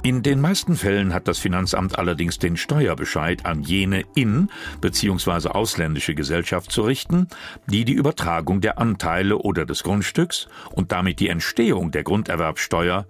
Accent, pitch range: German, 85-110 Hz